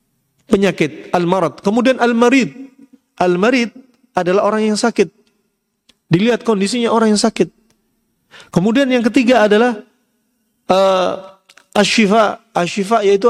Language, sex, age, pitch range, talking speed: Indonesian, male, 40-59, 175-235 Hz, 100 wpm